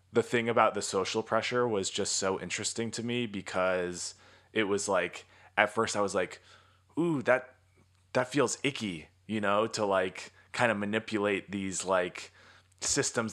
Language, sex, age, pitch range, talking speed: English, male, 20-39, 95-110 Hz, 160 wpm